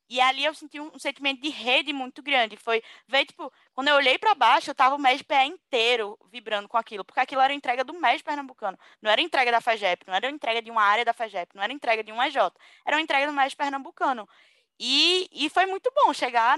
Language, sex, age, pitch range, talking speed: Portuguese, female, 10-29, 230-295 Hz, 255 wpm